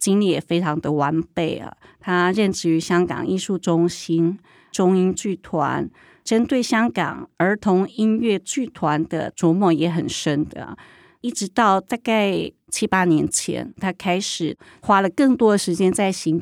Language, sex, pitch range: Chinese, female, 170-205 Hz